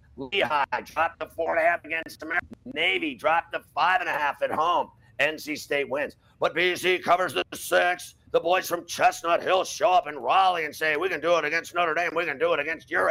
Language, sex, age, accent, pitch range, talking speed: English, male, 50-69, American, 155-205 Hz, 230 wpm